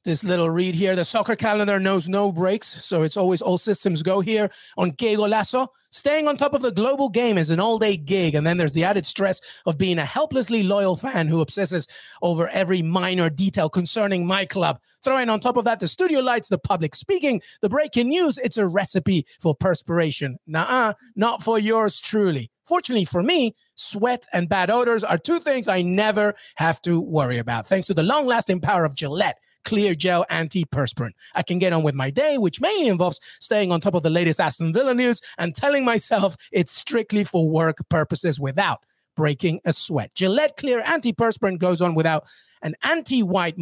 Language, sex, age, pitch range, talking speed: English, male, 30-49, 165-230 Hz, 195 wpm